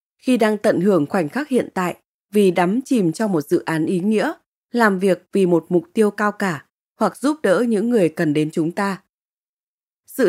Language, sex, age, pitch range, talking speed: Vietnamese, female, 20-39, 175-230 Hz, 205 wpm